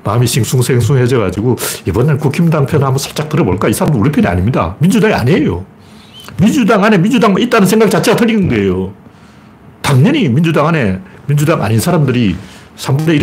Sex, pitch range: male, 110-155 Hz